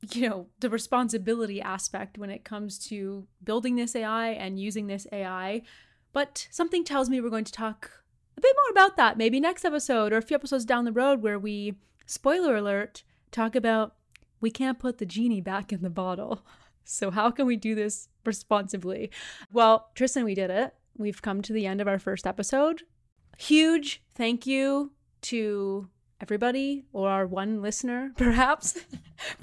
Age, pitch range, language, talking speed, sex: 20-39, 205-260 Hz, English, 175 wpm, female